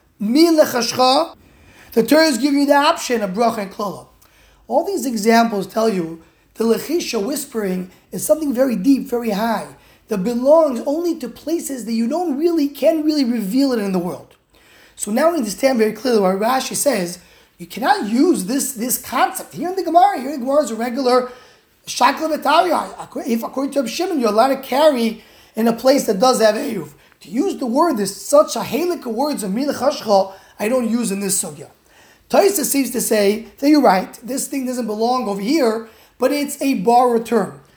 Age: 20-39